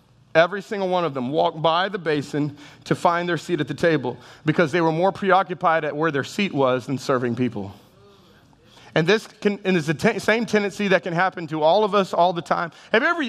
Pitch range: 150-210 Hz